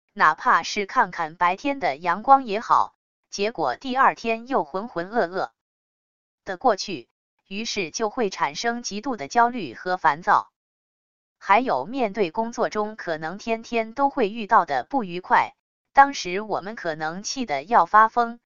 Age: 20-39